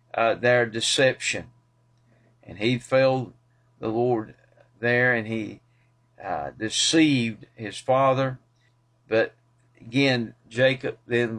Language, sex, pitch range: English, male, 115-125 Hz